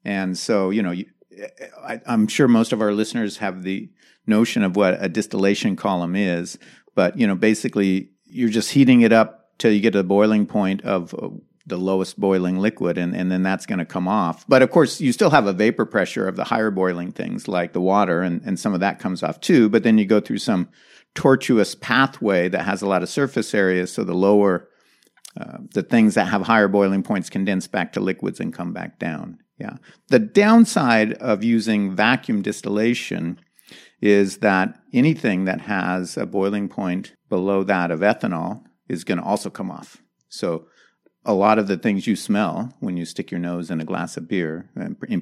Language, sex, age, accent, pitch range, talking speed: English, male, 50-69, American, 90-110 Hz, 200 wpm